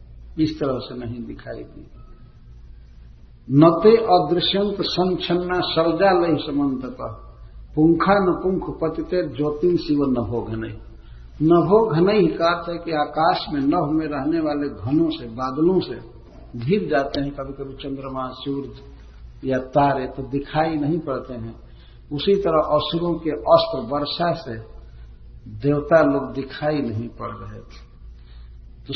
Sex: male